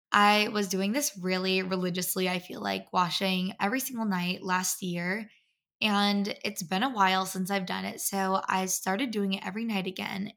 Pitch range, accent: 185-215 Hz, American